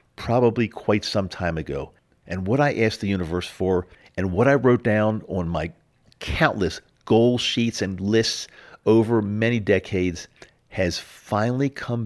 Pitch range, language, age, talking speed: 85-110 Hz, English, 50-69, 150 wpm